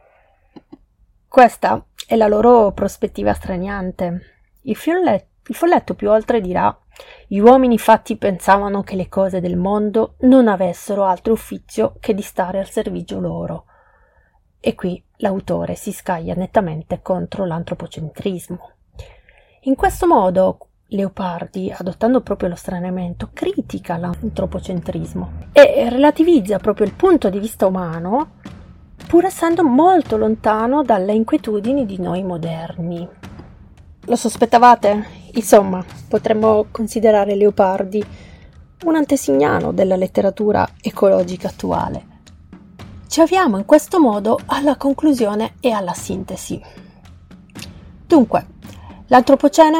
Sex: female